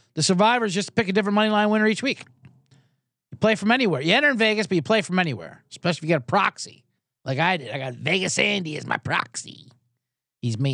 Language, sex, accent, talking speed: English, male, American, 235 wpm